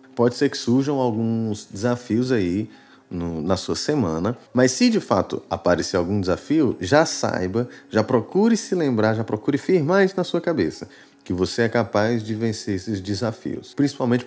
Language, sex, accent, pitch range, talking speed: Portuguese, male, Brazilian, 105-140 Hz, 165 wpm